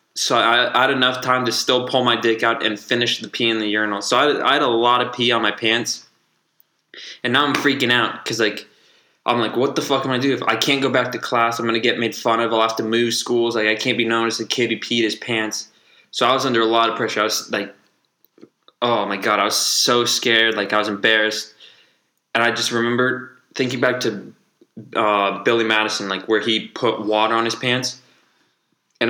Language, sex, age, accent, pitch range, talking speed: English, male, 20-39, American, 110-120 Hz, 245 wpm